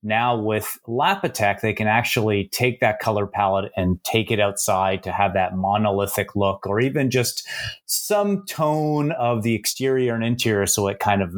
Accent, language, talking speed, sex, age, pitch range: American, English, 175 wpm, male, 30-49, 100-120 Hz